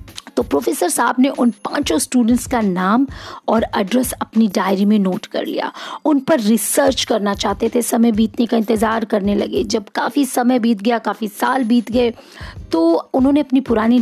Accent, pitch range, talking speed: native, 210-255 Hz, 180 wpm